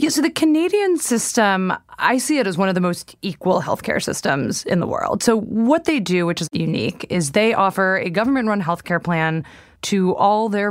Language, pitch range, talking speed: English, 170-215 Hz, 200 wpm